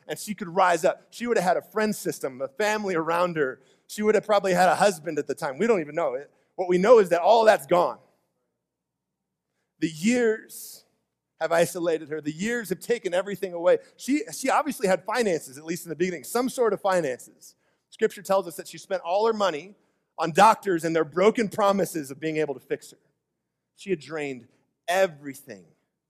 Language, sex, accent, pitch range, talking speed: English, male, American, 155-210 Hz, 205 wpm